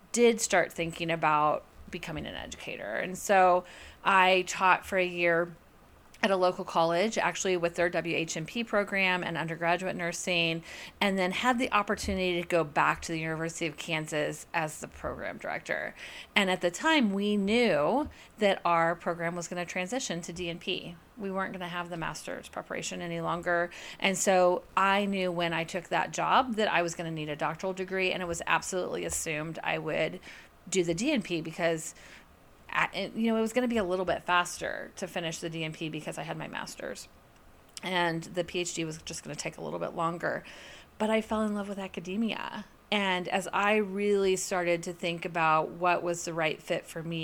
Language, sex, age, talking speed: English, female, 30-49, 190 wpm